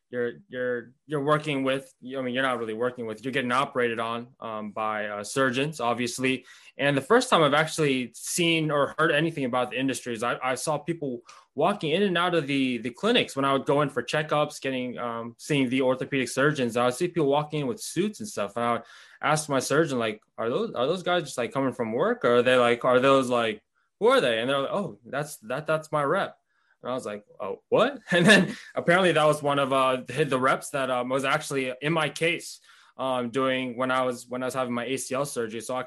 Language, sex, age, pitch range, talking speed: English, male, 20-39, 125-150 Hz, 240 wpm